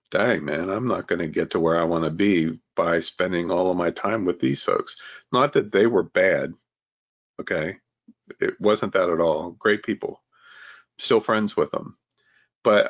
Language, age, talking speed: English, 50-69, 185 wpm